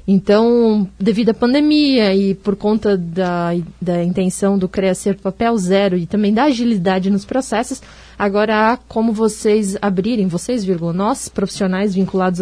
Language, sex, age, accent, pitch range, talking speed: Portuguese, female, 20-39, Brazilian, 195-230 Hz, 145 wpm